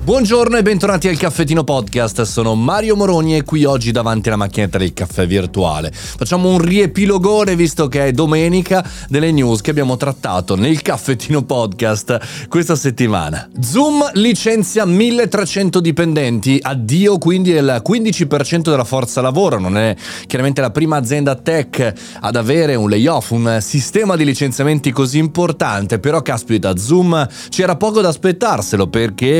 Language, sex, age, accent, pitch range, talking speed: Italian, male, 30-49, native, 115-170 Hz, 145 wpm